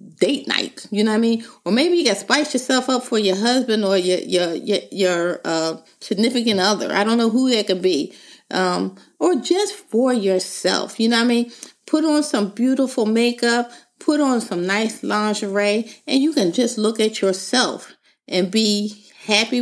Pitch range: 200-255 Hz